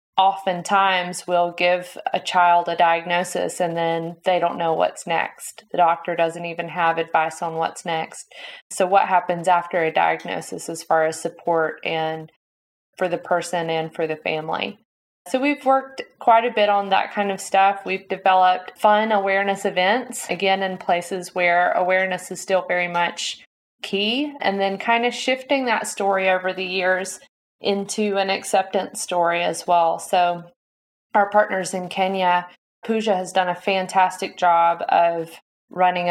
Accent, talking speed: American, 160 wpm